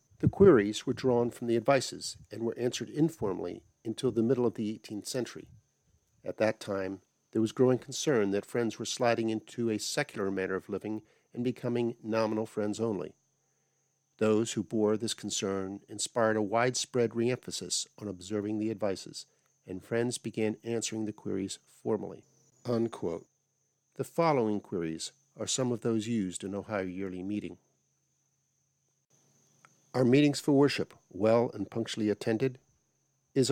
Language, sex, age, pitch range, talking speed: English, male, 50-69, 105-130 Hz, 145 wpm